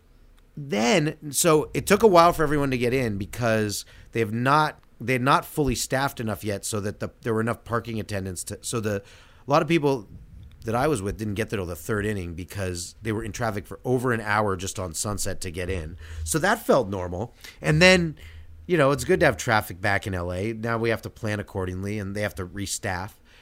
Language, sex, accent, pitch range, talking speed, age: English, male, American, 100-135 Hz, 230 wpm, 30-49